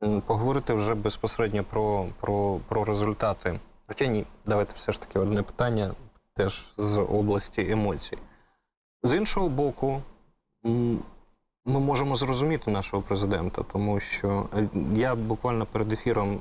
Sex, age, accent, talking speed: male, 20-39, native, 120 wpm